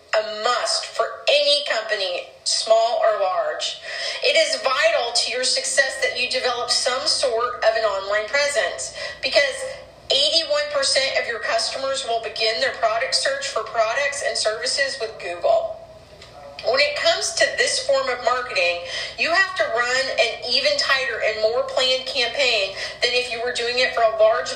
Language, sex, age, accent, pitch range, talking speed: English, female, 40-59, American, 220-320 Hz, 165 wpm